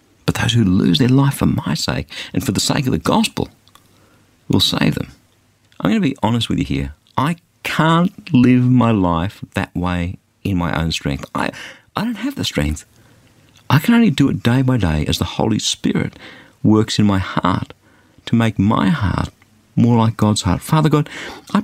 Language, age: English, 50-69